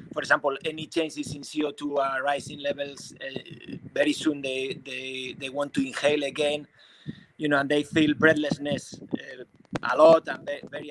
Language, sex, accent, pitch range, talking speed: English, male, Spanish, 145-165 Hz, 170 wpm